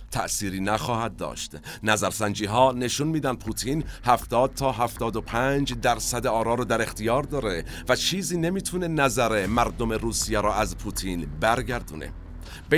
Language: Persian